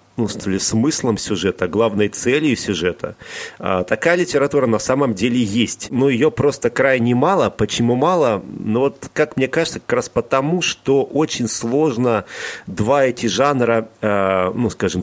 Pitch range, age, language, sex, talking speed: 105-130 Hz, 40-59, Russian, male, 145 wpm